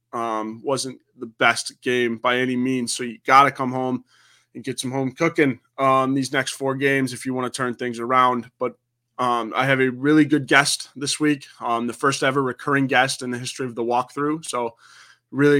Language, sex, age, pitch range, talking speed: English, male, 20-39, 125-140 Hz, 210 wpm